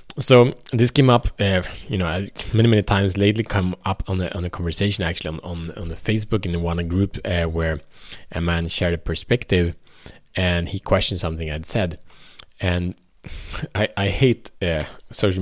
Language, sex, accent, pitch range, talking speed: Swedish, male, Norwegian, 85-110 Hz, 175 wpm